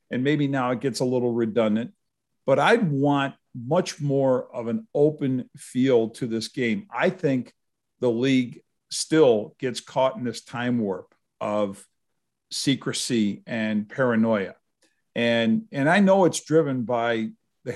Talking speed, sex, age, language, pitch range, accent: 145 wpm, male, 50-69, English, 115-150 Hz, American